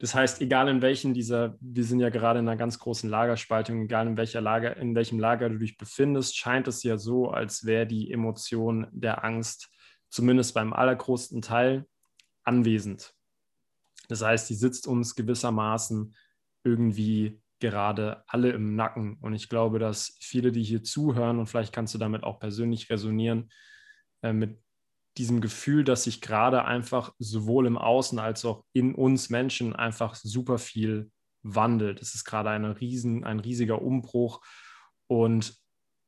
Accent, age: German, 20-39